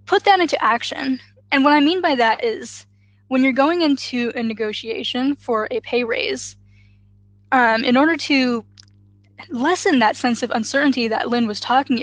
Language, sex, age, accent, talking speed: English, female, 10-29, American, 170 wpm